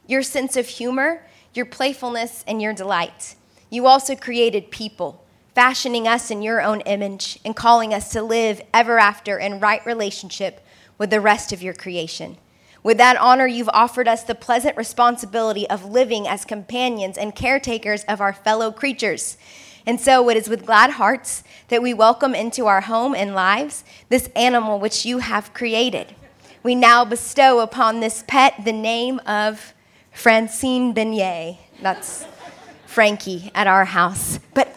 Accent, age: American, 20-39